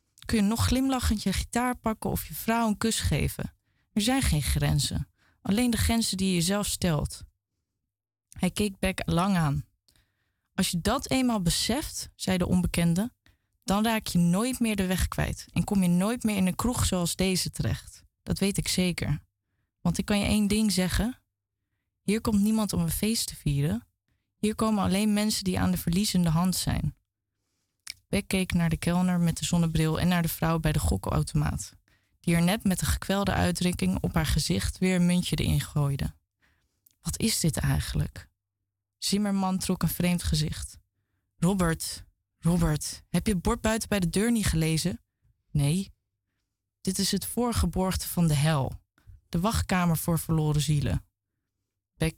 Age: 20-39